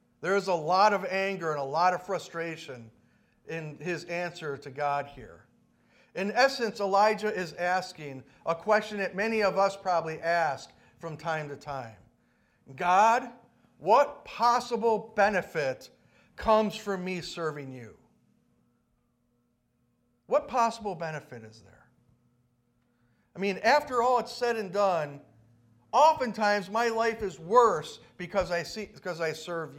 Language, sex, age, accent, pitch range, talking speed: English, male, 50-69, American, 150-225 Hz, 130 wpm